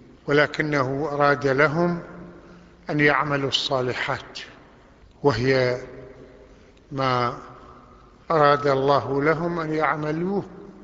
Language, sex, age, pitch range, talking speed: Arabic, male, 50-69, 135-165 Hz, 70 wpm